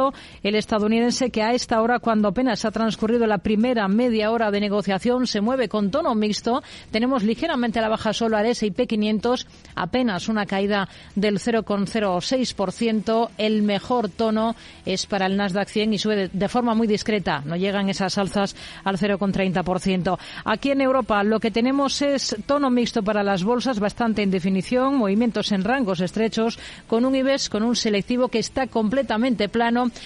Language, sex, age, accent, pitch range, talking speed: Spanish, female, 40-59, Spanish, 205-245 Hz, 165 wpm